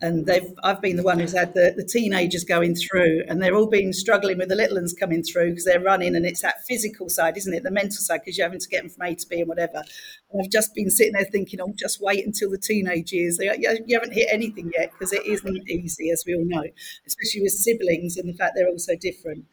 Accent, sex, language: British, female, English